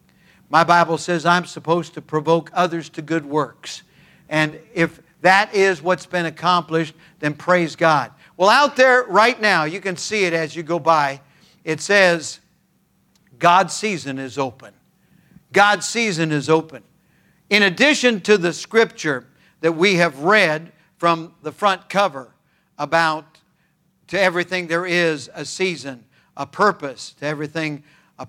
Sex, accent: male, American